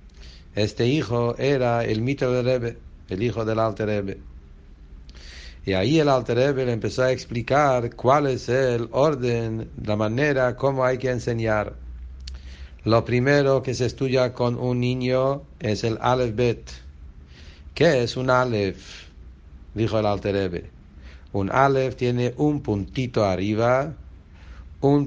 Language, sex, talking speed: English, male, 135 wpm